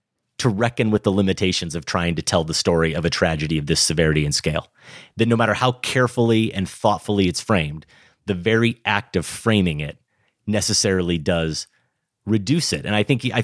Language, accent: English, American